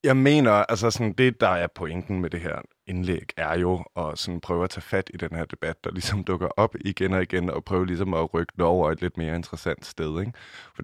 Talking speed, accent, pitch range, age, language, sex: 250 wpm, native, 90-110 Hz, 20-39, Danish, male